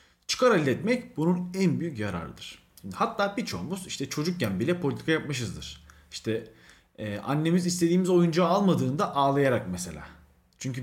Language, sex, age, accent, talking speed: Turkish, male, 40-59, native, 115 wpm